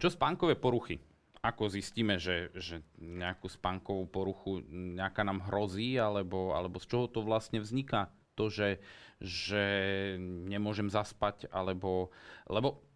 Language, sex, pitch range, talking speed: Slovak, male, 95-115 Hz, 120 wpm